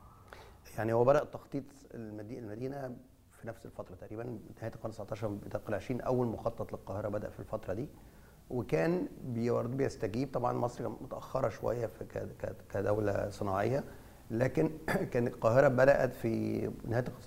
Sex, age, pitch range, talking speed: male, 30-49, 105-125 Hz, 130 wpm